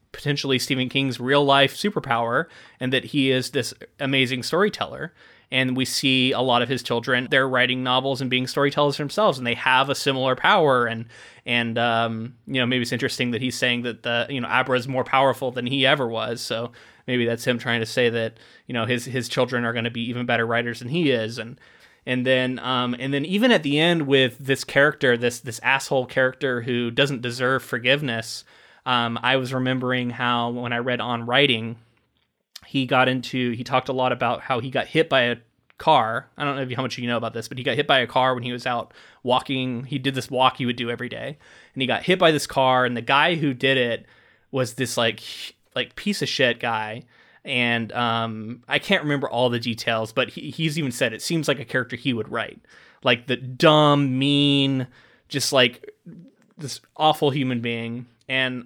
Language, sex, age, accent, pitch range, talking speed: English, male, 20-39, American, 120-135 Hz, 215 wpm